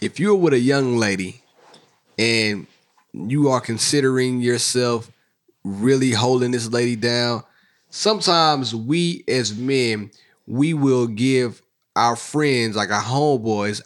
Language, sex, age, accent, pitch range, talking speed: English, male, 30-49, American, 120-150 Hz, 120 wpm